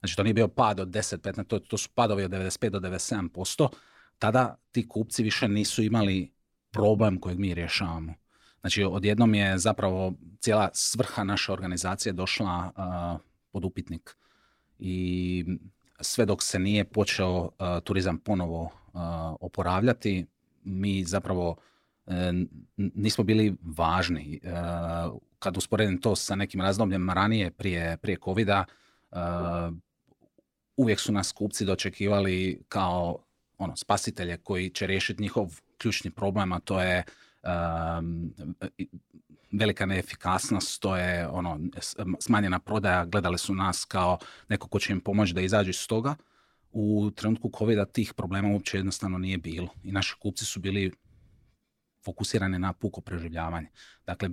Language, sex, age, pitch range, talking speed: Croatian, male, 40-59, 90-105 Hz, 135 wpm